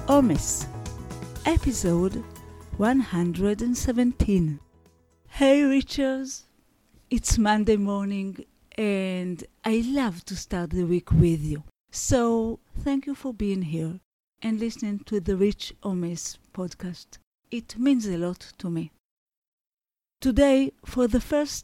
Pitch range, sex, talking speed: 185-245 Hz, female, 110 wpm